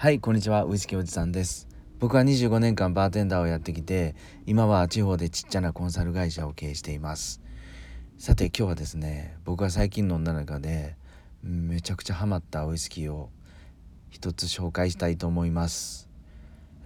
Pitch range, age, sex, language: 80-110 Hz, 40-59, male, Japanese